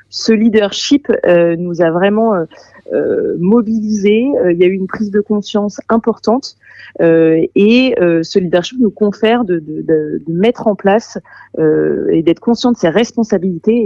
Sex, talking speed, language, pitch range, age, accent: female, 145 wpm, French, 180-230 Hz, 30-49, French